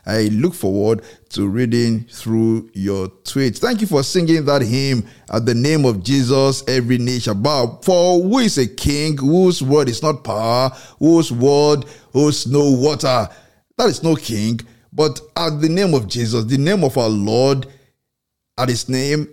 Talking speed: 170 wpm